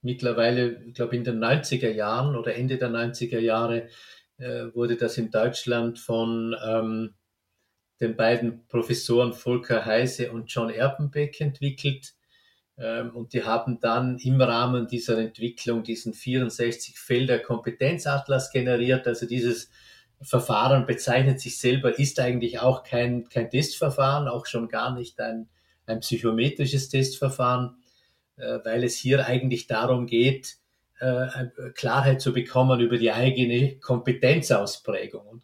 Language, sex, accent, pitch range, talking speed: German, male, Austrian, 115-125 Hz, 120 wpm